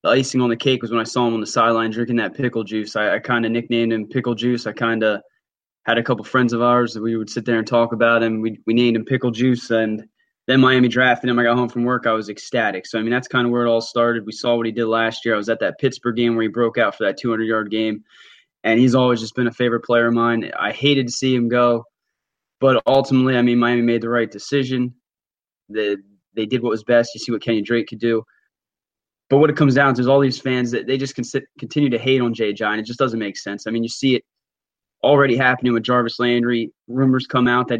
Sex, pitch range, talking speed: male, 115-125 Hz, 270 wpm